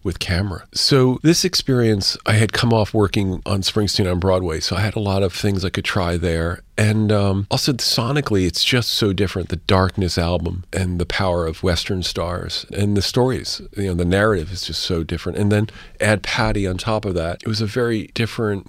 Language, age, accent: English, 40-59, American